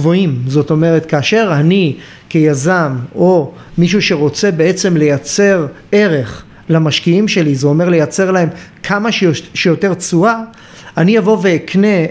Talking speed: 115 wpm